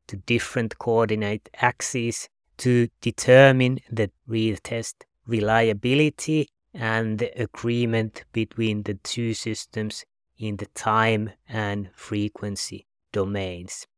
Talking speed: 100 wpm